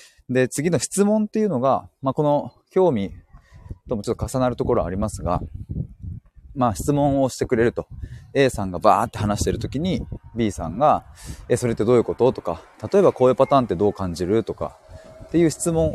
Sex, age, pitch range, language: male, 20-39, 95-140 Hz, Japanese